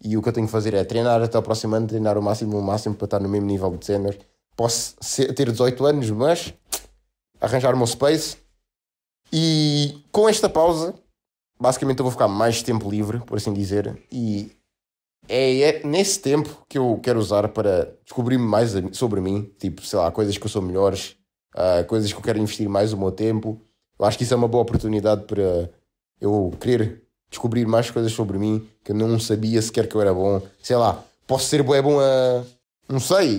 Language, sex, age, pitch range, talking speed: Portuguese, male, 20-39, 105-140 Hz, 200 wpm